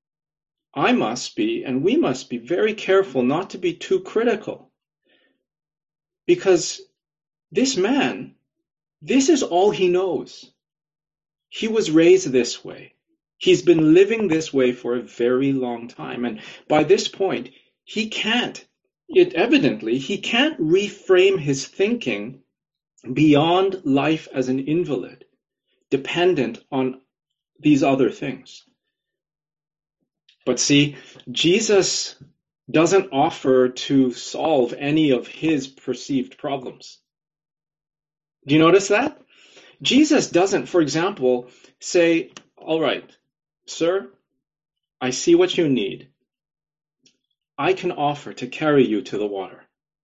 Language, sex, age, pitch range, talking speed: English, male, 40-59, 140-205 Hz, 120 wpm